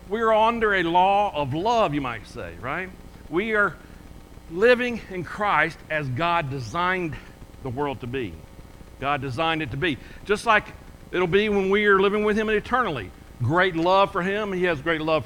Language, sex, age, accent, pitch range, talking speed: English, male, 60-79, American, 160-235 Hz, 185 wpm